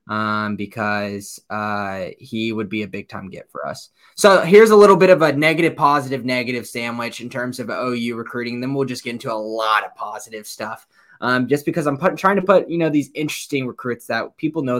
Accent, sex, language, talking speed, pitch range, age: American, male, English, 215 wpm, 115-140 Hz, 20-39